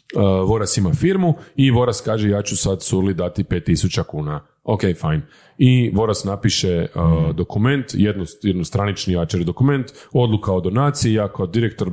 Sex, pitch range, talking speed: male, 95-125 Hz, 150 wpm